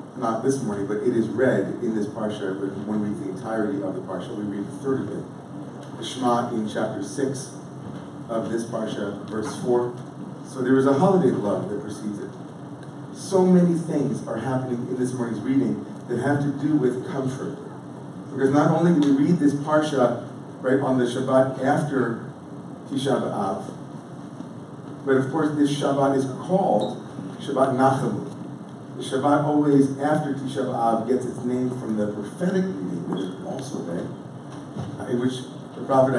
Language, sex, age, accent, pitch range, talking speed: English, male, 40-59, American, 120-145 Hz, 170 wpm